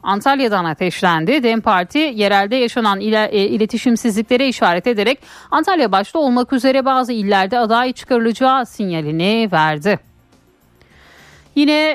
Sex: female